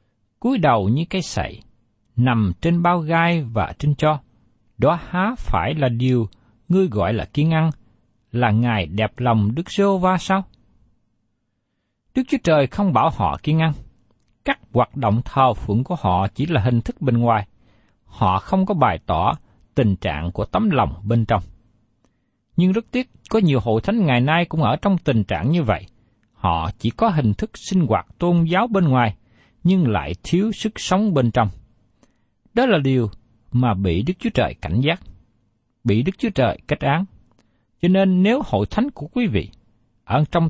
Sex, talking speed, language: male, 180 wpm, Vietnamese